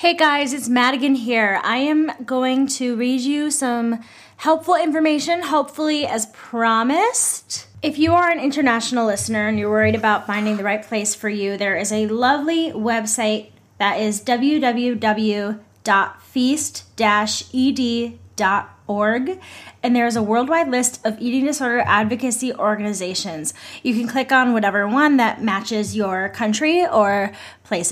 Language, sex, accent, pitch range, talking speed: English, female, American, 215-270 Hz, 135 wpm